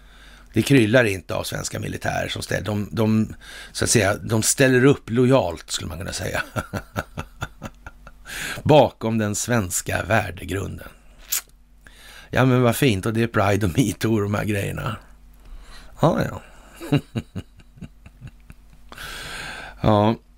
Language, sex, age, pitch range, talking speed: Swedish, male, 60-79, 100-130 Hz, 125 wpm